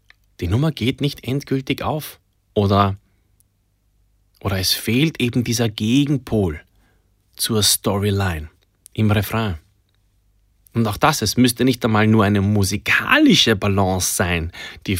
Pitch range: 100-135 Hz